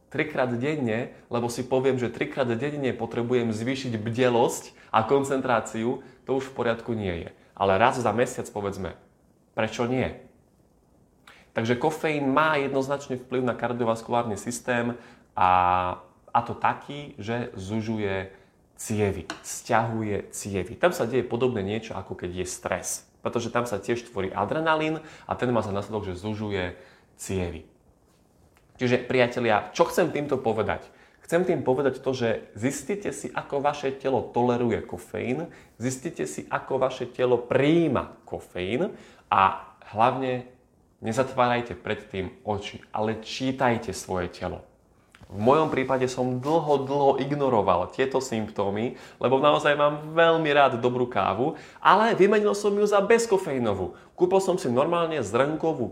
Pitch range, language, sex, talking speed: 110-135 Hz, Slovak, male, 135 wpm